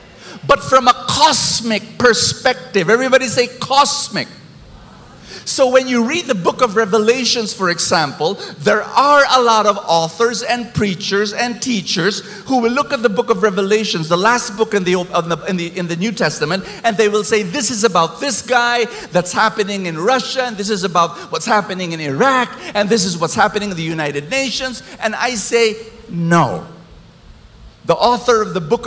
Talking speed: 180 wpm